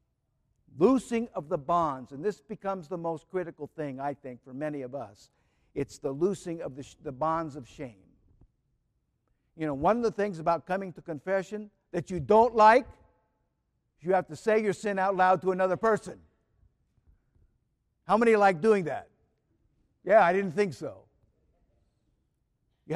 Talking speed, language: 165 wpm, English